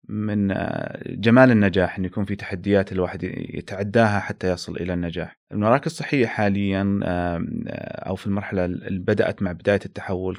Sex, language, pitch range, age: male, Arabic, 90-105 Hz, 30-49